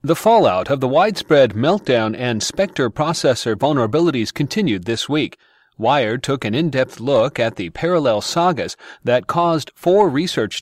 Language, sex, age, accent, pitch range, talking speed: English, male, 40-59, American, 115-155 Hz, 145 wpm